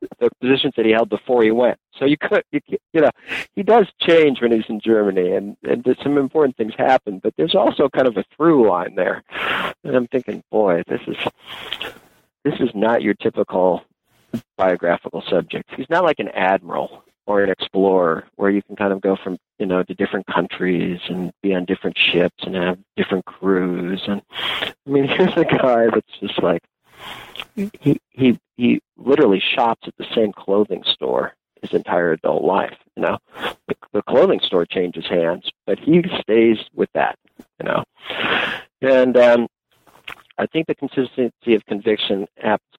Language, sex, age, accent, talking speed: English, male, 50-69, American, 175 wpm